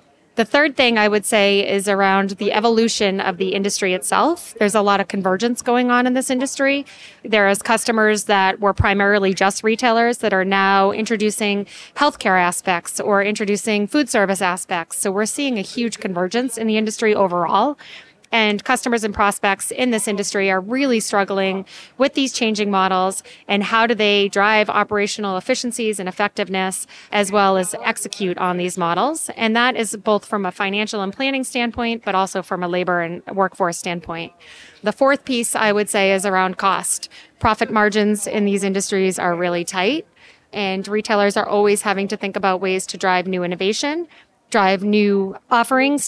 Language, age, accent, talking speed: English, 30-49, American, 175 wpm